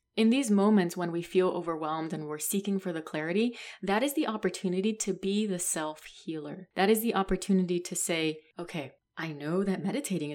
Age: 20-39